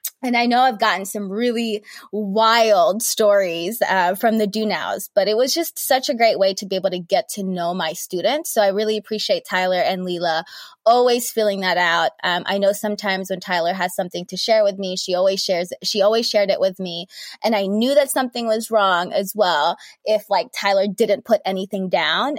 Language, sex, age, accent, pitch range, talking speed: English, female, 20-39, American, 190-235 Hz, 210 wpm